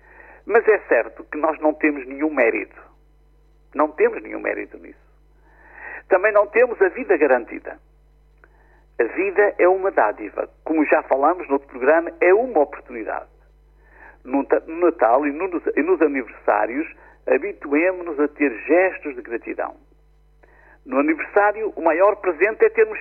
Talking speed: 135 wpm